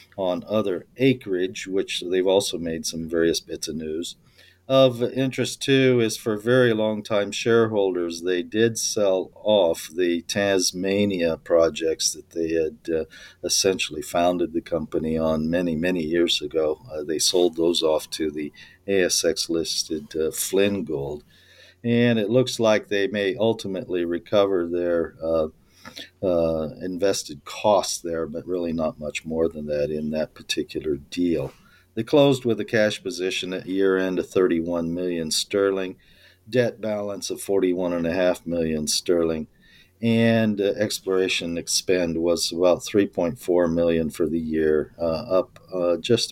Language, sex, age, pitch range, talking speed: English, male, 50-69, 85-105 Hz, 140 wpm